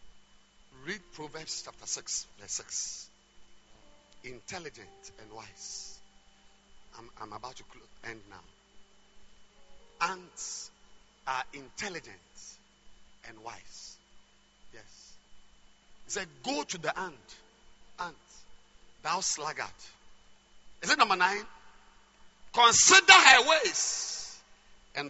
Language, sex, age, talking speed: English, male, 50-69, 90 wpm